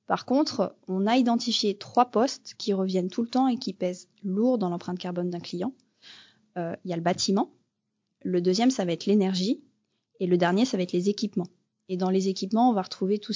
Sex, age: female, 20-39